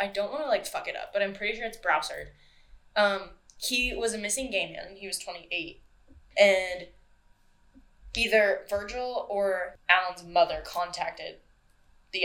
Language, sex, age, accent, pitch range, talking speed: English, female, 10-29, American, 195-240 Hz, 150 wpm